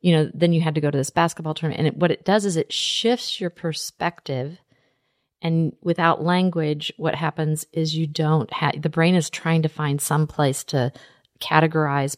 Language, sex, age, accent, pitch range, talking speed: English, female, 40-59, American, 150-180 Hz, 190 wpm